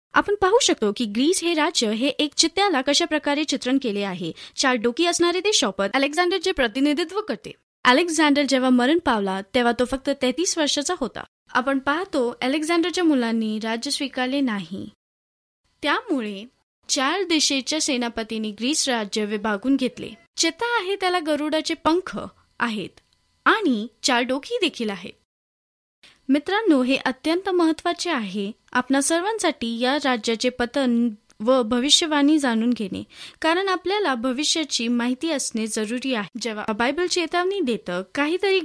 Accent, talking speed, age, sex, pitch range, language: native, 110 wpm, 20-39, female, 235-330 Hz, Marathi